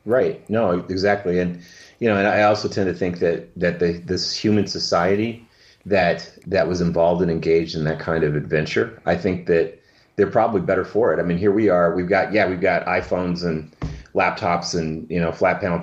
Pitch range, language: 85-100 Hz, English